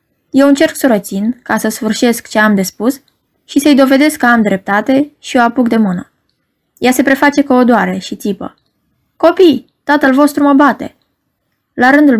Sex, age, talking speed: female, 20-39, 180 wpm